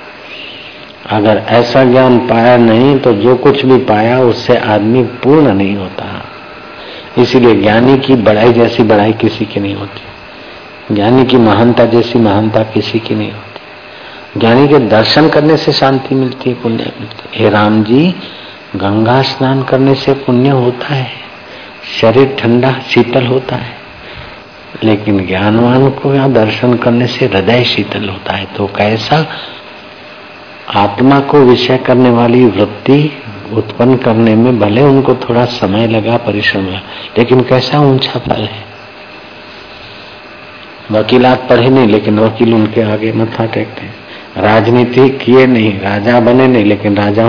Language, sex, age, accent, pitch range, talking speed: Hindi, male, 60-79, native, 110-130 Hz, 135 wpm